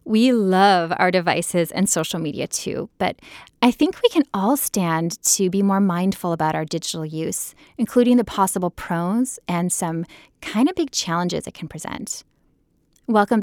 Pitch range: 175-230 Hz